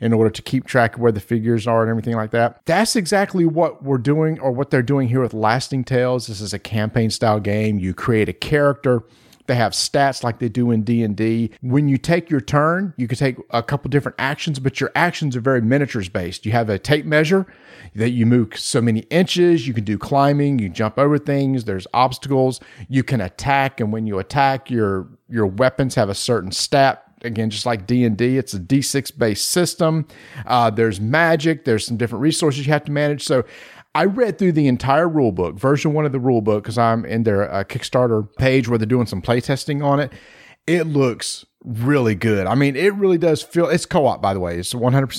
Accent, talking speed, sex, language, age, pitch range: American, 210 wpm, male, English, 40-59, 115-145 Hz